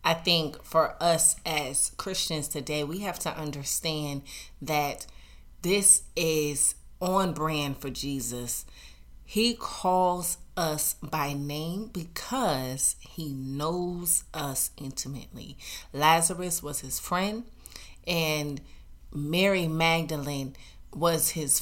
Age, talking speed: 30-49, 105 wpm